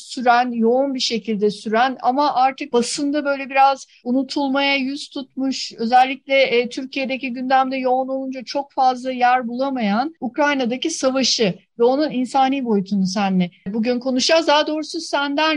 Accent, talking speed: native, 135 wpm